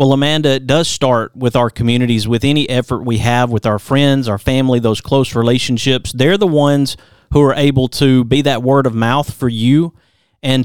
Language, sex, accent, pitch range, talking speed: English, male, American, 125-150 Hz, 205 wpm